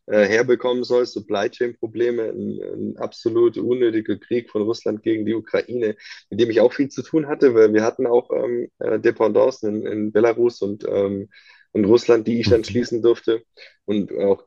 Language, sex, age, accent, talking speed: German, male, 20-39, German, 180 wpm